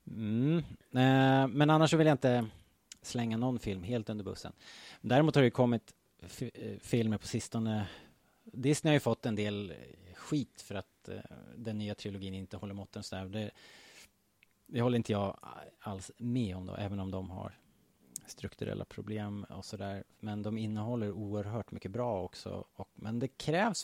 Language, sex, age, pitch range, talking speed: Swedish, male, 30-49, 95-120 Hz, 175 wpm